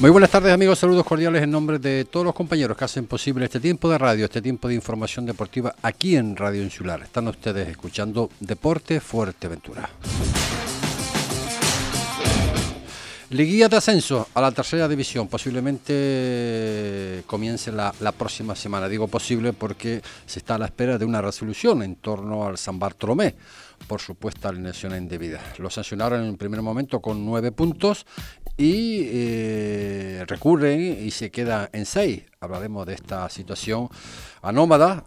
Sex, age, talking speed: male, 50-69, 150 wpm